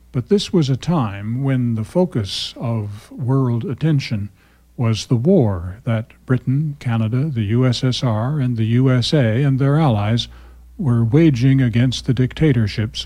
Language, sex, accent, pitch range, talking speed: English, male, American, 105-135 Hz, 140 wpm